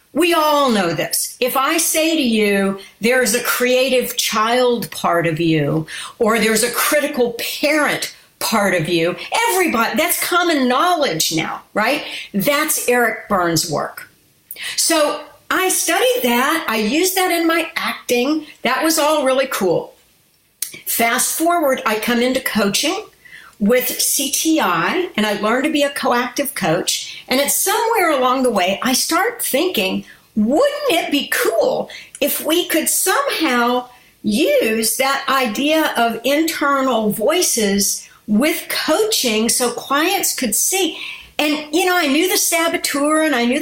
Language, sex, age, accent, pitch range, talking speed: English, female, 60-79, American, 230-325 Hz, 145 wpm